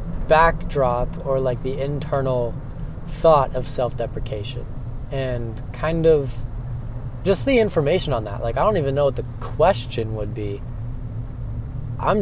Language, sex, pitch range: English, male, 115-150 Hz